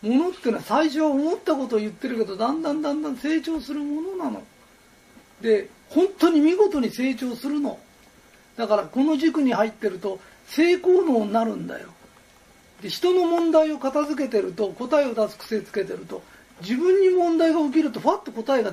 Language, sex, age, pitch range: Japanese, male, 40-59, 225-320 Hz